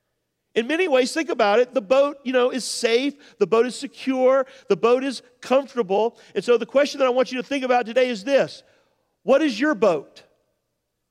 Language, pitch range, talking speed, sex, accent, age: English, 230-280 Hz, 205 wpm, male, American, 40-59